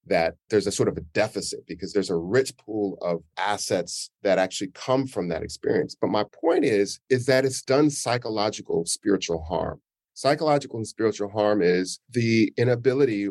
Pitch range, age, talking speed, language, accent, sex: 105-135 Hz, 40-59, 170 wpm, English, American, male